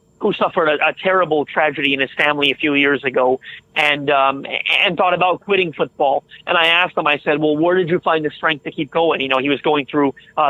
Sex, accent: male, American